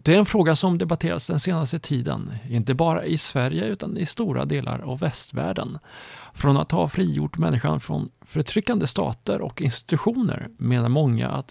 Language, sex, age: Swedish, male, 30-49